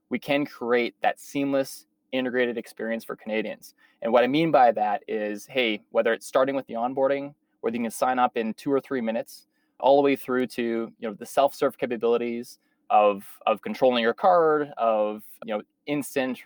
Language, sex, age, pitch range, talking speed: English, male, 20-39, 115-150 Hz, 190 wpm